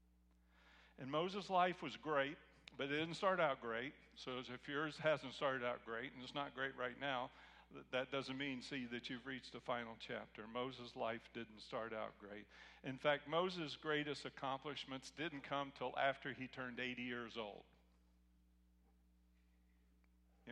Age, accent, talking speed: 50-69, American, 160 wpm